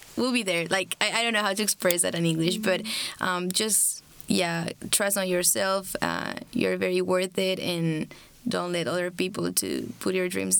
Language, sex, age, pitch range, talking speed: English, female, 20-39, 175-205 Hz, 200 wpm